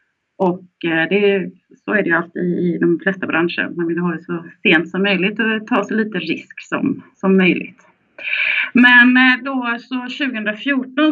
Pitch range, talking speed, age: 185-250 Hz, 165 wpm, 30-49